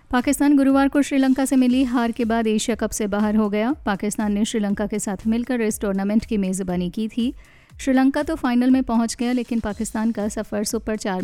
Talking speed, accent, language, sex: 205 wpm, native, Hindi, female